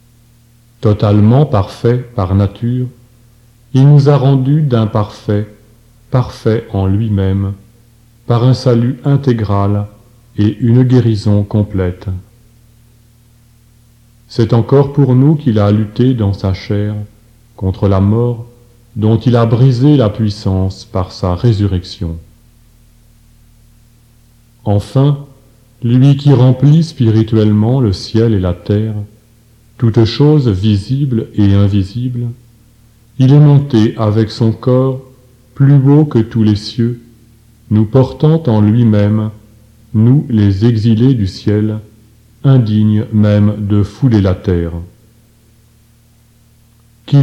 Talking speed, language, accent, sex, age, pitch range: 110 wpm, French, French, male, 40-59, 105-120 Hz